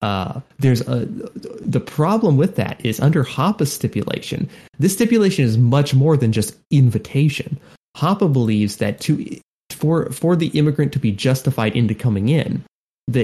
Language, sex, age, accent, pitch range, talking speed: English, male, 30-49, American, 110-145 Hz, 155 wpm